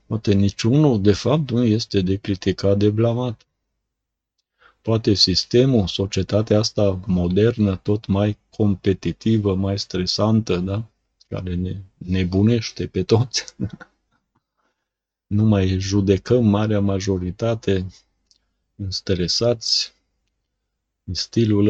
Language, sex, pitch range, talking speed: Romanian, male, 95-110 Hz, 95 wpm